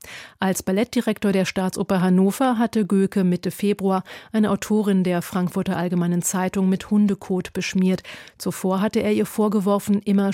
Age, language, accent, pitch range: 40-59, German, German, 190-215 Hz